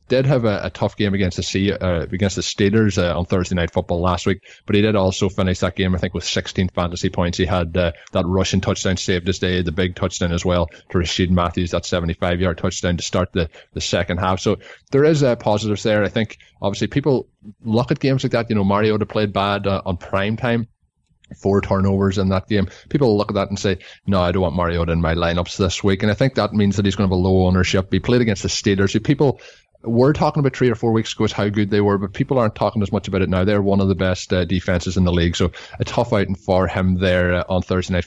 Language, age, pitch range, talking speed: English, 20-39, 90-100 Hz, 265 wpm